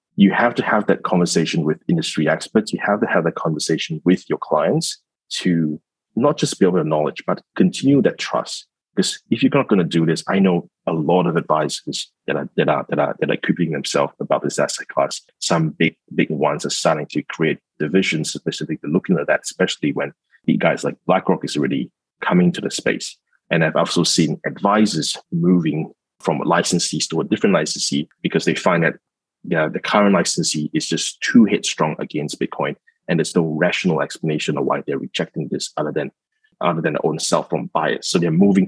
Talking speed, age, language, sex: 200 wpm, 30-49, English, male